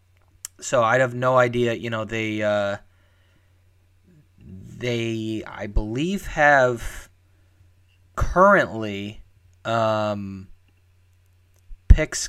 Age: 20-39